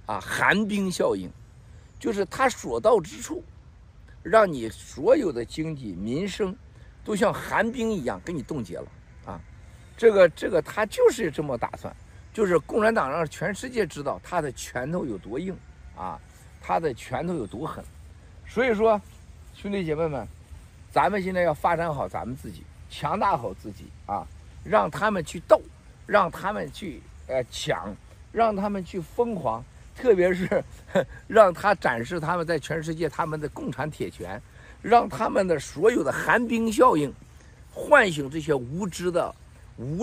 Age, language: 50-69, Chinese